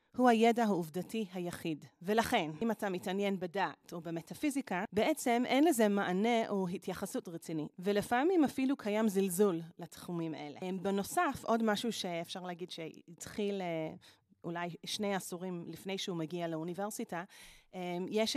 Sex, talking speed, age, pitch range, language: female, 125 wpm, 30-49, 175-230 Hz, Hebrew